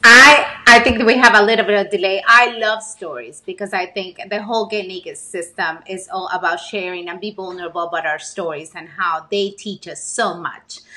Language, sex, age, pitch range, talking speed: English, female, 30-49, 185-220 Hz, 210 wpm